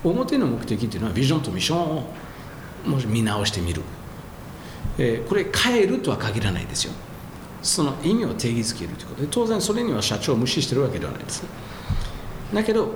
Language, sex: Japanese, male